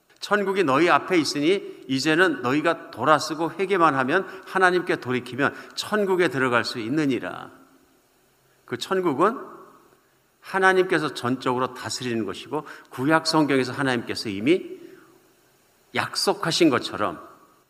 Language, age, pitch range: Korean, 50-69, 125-185 Hz